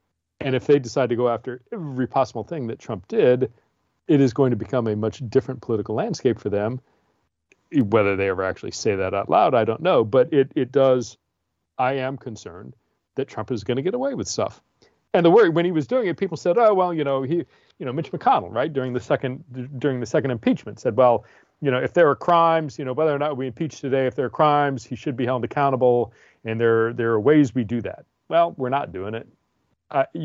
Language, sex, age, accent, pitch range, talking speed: English, male, 40-59, American, 105-135 Hz, 235 wpm